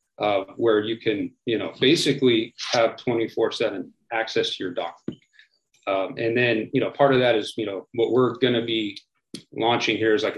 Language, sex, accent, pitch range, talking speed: English, male, American, 115-140 Hz, 190 wpm